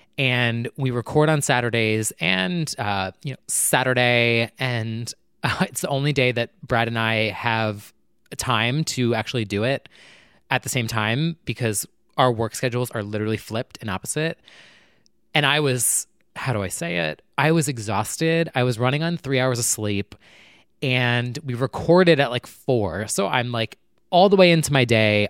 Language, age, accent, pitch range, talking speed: English, 20-39, American, 110-140 Hz, 175 wpm